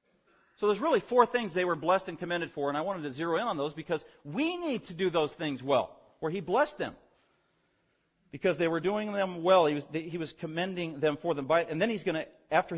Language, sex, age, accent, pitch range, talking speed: English, male, 40-59, American, 150-190 Hz, 245 wpm